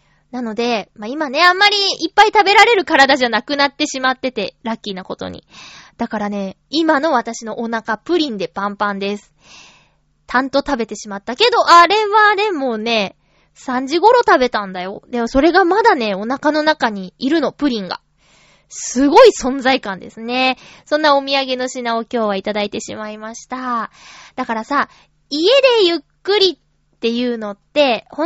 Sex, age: female, 20-39